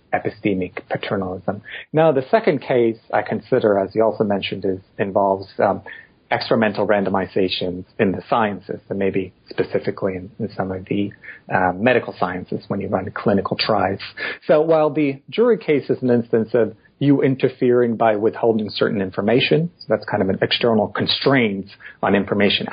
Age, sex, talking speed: 40-59, male, 160 wpm